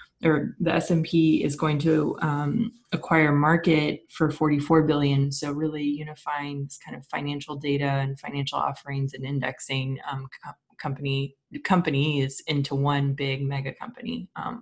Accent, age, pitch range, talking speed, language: American, 20-39, 145-180 Hz, 145 wpm, English